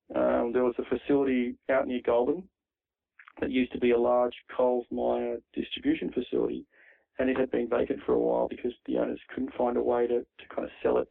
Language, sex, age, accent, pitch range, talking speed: English, male, 30-49, Australian, 120-130 Hz, 210 wpm